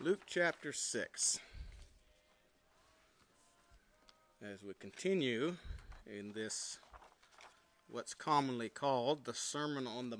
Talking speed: 90 wpm